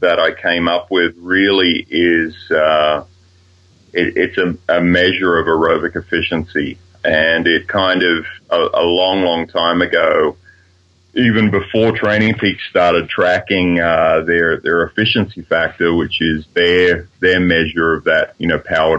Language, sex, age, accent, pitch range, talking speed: English, male, 40-59, Australian, 80-90 Hz, 150 wpm